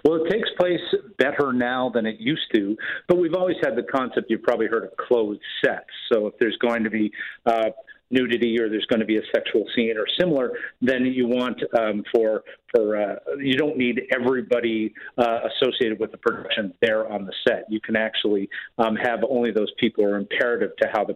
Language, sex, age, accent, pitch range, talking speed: English, male, 50-69, American, 110-130 Hz, 210 wpm